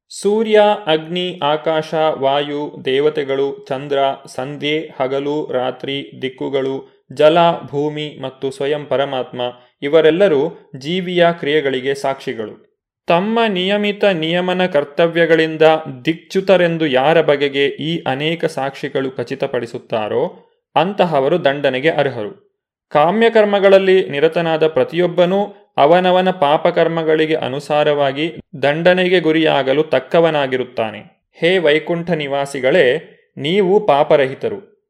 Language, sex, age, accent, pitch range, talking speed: Kannada, male, 30-49, native, 145-190 Hz, 80 wpm